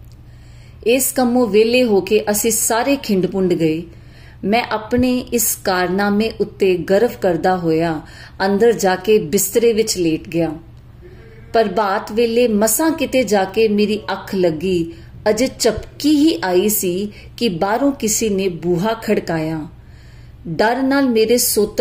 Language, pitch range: Punjabi, 180-230 Hz